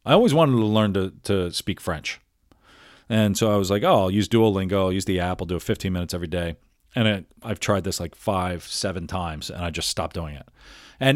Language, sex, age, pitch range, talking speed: English, male, 40-59, 90-115 Hz, 240 wpm